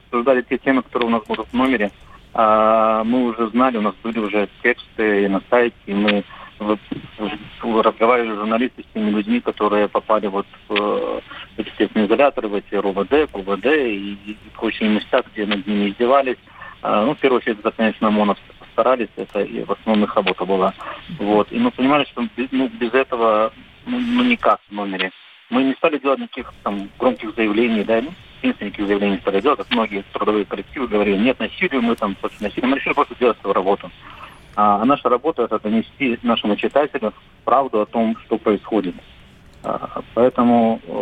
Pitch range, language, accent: 105-125 Hz, Russian, native